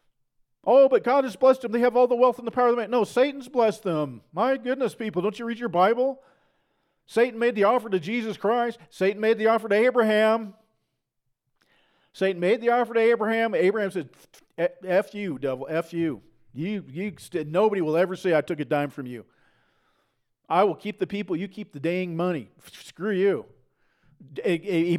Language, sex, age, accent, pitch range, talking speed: English, male, 40-59, American, 155-220 Hz, 190 wpm